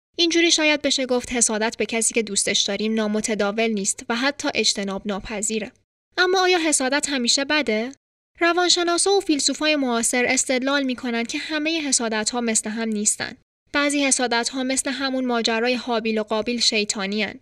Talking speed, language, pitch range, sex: 150 wpm, Persian, 215-275 Hz, female